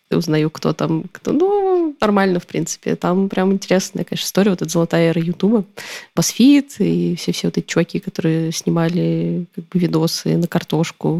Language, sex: Russian, female